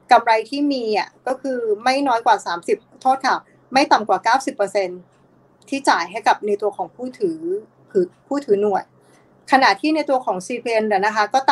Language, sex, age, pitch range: Thai, female, 20-39, 215-270 Hz